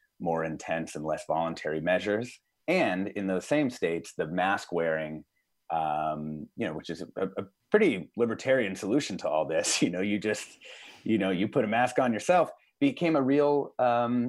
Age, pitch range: 30-49, 80-105 Hz